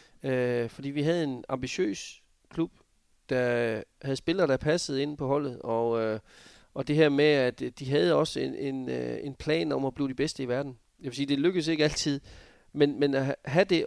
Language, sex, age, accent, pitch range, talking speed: Danish, male, 30-49, native, 120-145 Hz, 200 wpm